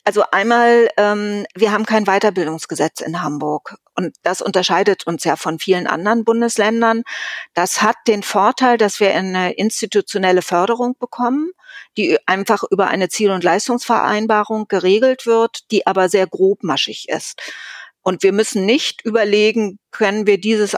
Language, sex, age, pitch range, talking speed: German, female, 50-69, 180-215 Hz, 145 wpm